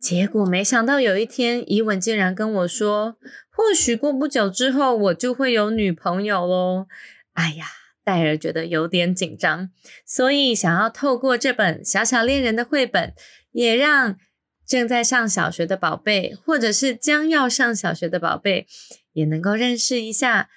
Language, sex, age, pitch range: Chinese, female, 20-39, 190-270 Hz